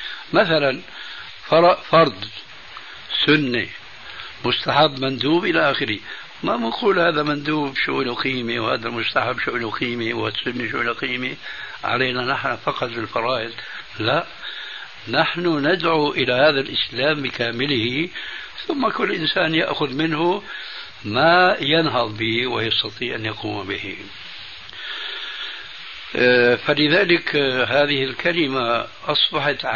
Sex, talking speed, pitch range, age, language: male, 95 wpm, 120-155 Hz, 60-79, Arabic